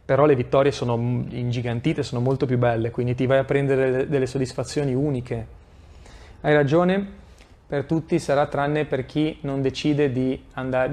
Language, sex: Italian, male